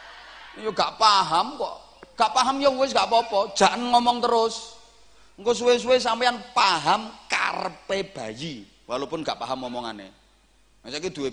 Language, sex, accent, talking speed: Indonesian, male, native, 130 wpm